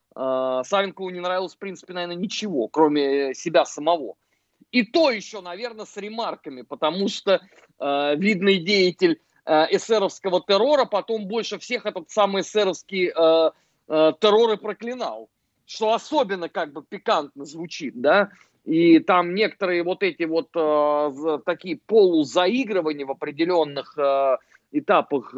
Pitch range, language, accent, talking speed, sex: 150-215 Hz, Russian, native, 125 wpm, male